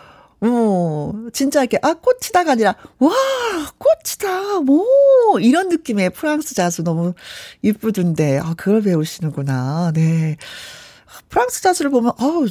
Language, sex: Korean, female